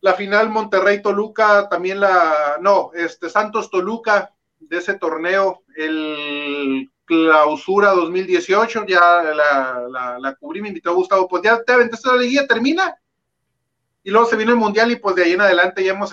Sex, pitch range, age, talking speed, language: male, 160-200 Hz, 40-59, 165 wpm, Spanish